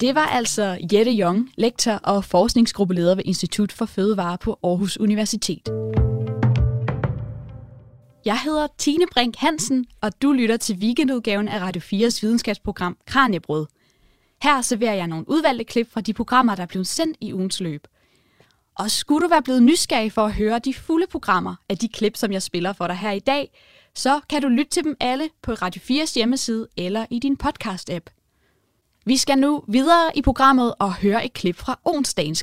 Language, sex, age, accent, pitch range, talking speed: Danish, female, 20-39, native, 190-260 Hz, 180 wpm